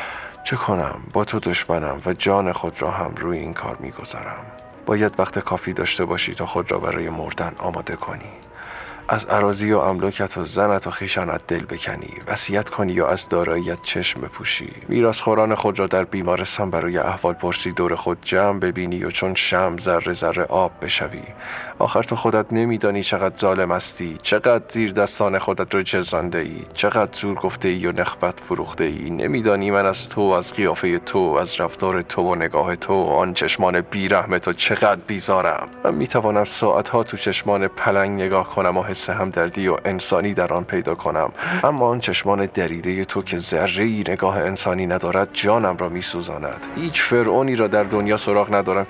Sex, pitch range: male, 90-105 Hz